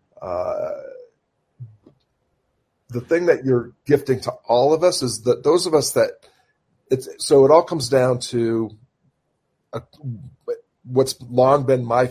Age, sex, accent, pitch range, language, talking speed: 40-59, male, American, 110-135 Hz, English, 135 wpm